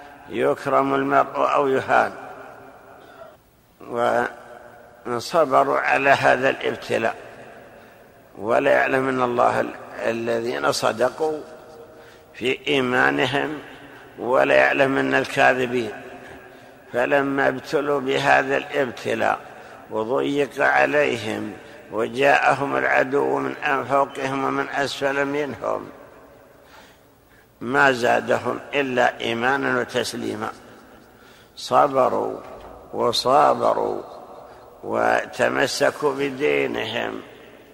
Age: 60-79